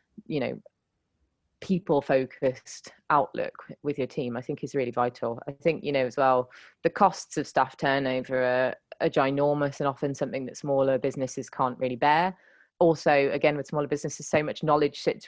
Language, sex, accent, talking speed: English, female, British, 175 wpm